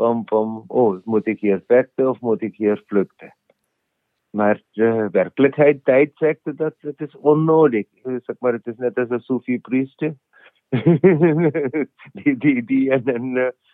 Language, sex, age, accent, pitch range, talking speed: Dutch, male, 50-69, Indian, 110-130 Hz, 155 wpm